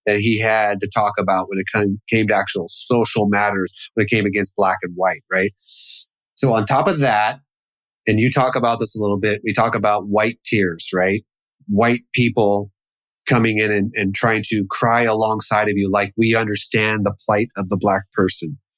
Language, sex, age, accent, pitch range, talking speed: English, male, 30-49, American, 105-125 Hz, 195 wpm